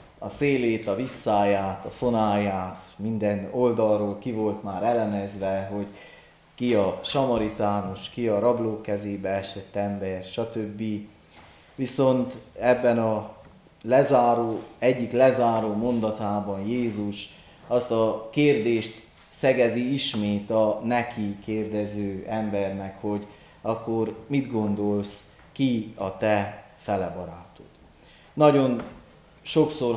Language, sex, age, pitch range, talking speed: Hungarian, male, 30-49, 105-120 Hz, 100 wpm